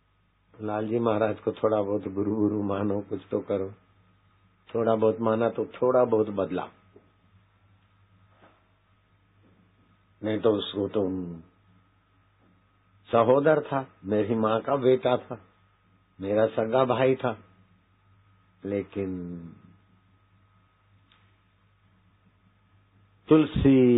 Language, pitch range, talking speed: Hindi, 95-125 Hz, 90 wpm